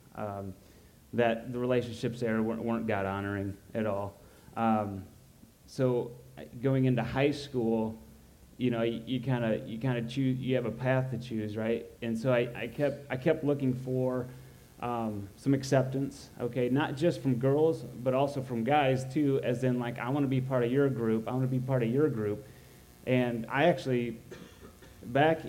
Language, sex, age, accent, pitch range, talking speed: English, male, 30-49, American, 115-130 Hz, 180 wpm